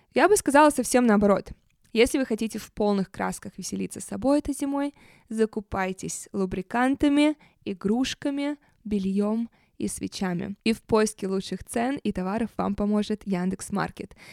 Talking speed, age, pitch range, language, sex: 140 wpm, 20-39, 190-245 Hz, Russian, female